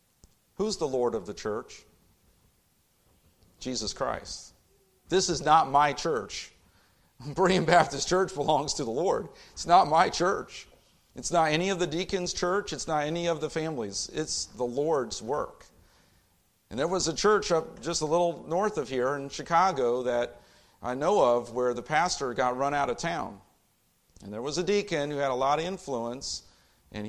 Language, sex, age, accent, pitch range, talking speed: English, male, 50-69, American, 120-155 Hz, 175 wpm